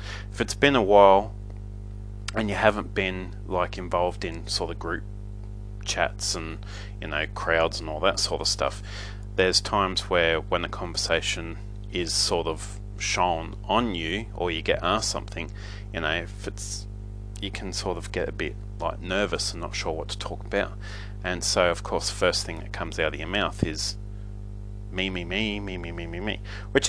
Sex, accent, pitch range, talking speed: male, Australian, 95-100 Hz, 190 wpm